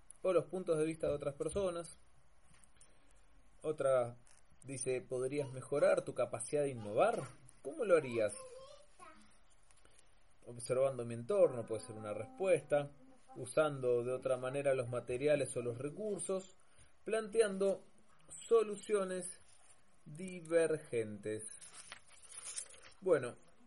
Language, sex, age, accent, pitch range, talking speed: Spanish, male, 20-39, Argentinian, 125-180 Hz, 100 wpm